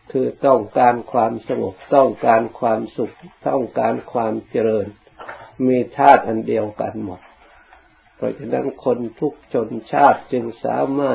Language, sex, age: Thai, male, 60-79